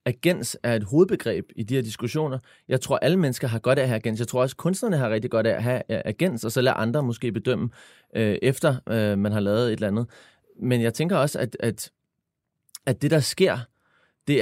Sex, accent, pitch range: male, native, 115-145 Hz